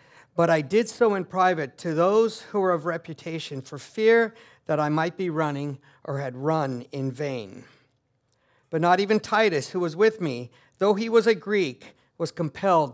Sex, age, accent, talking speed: male, 50-69, American, 180 wpm